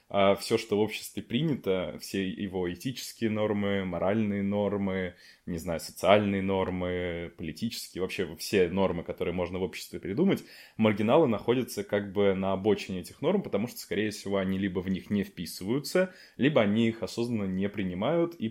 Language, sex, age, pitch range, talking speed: Russian, male, 20-39, 95-105 Hz, 160 wpm